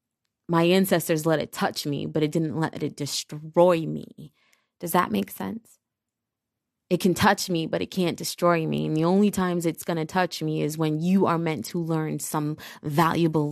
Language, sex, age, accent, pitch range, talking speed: English, female, 20-39, American, 145-190 Hz, 195 wpm